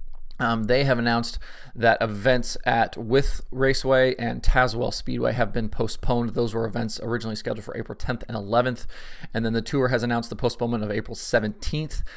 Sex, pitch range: male, 110-125 Hz